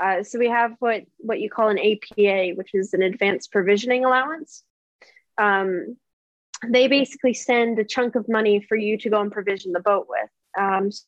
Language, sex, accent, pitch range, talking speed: English, female, American, 195-230 Hz, 185 wpm